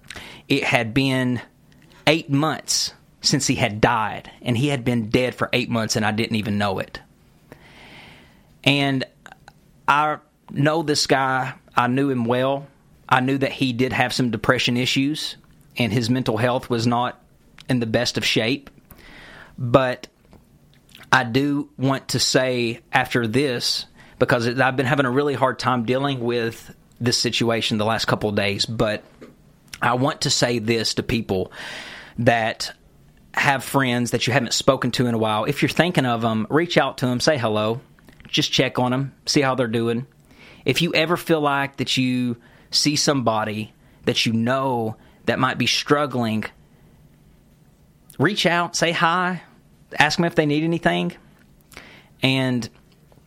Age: 30-49